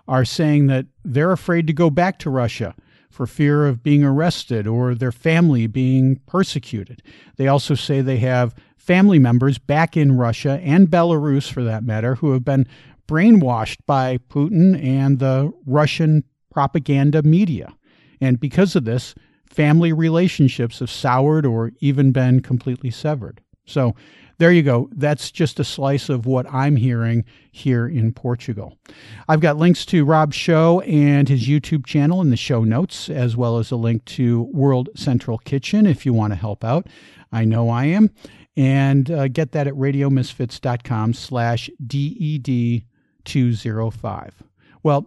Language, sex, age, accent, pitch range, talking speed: English, male, 50-69, American, 125-155 Hz, 155 wpm